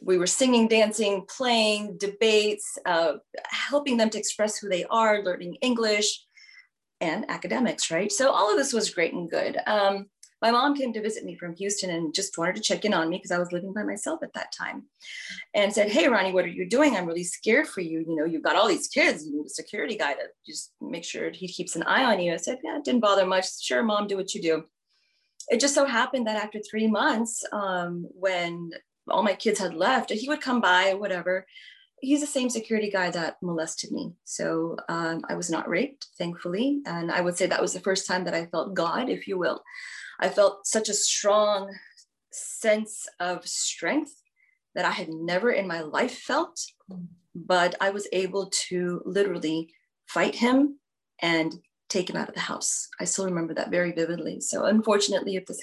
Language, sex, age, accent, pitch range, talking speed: English, female, 30-49, American, 175-225 Hz, 210 wpm